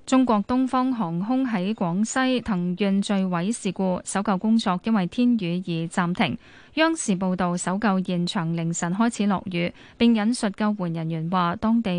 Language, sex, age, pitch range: Chinese, female, 10-29, 180-230 Hz